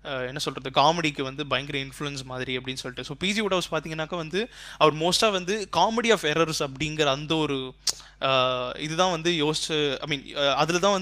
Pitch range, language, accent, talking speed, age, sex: 150-190 Hz, Tamil, native, 135 wpm, 20-39, male